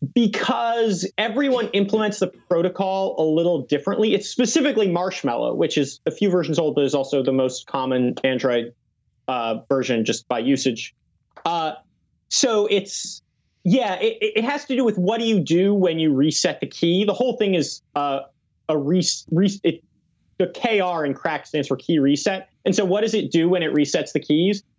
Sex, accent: male, American